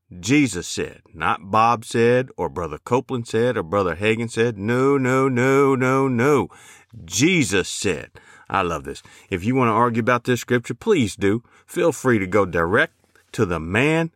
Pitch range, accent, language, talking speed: 105-120 Hz, American, English, 175 wpm